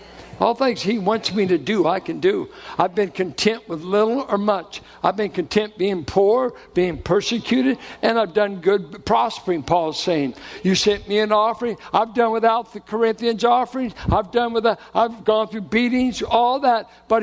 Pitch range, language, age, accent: 175-225 Hz, English, 60-79, American